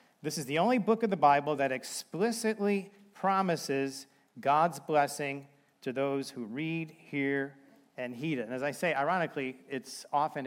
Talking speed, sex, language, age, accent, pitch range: 160 wpm, male, English, 40-59, American, 135-170 Hz